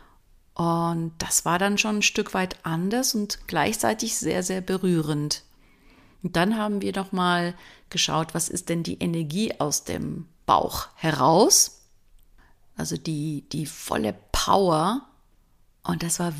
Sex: female